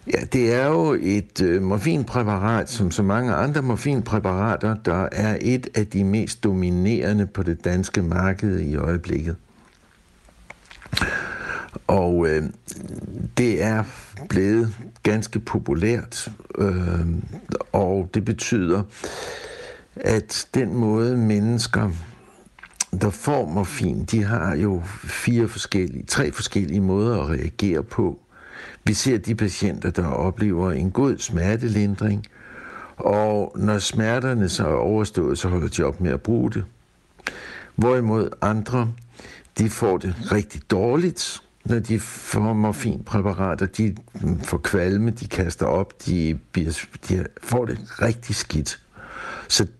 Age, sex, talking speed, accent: 60-79, male, 115 wpm, native